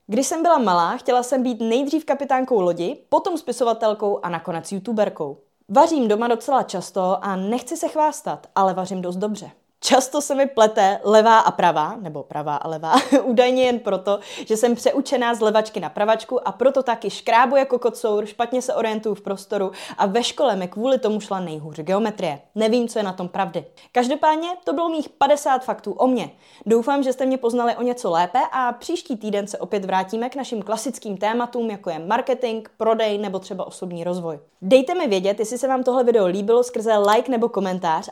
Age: 20-39